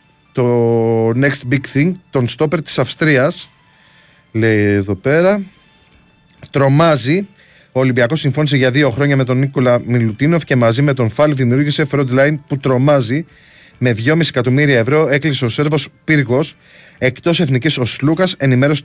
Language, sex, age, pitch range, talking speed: Greek, male, 30-49, 130-160 Hz, 140 wpm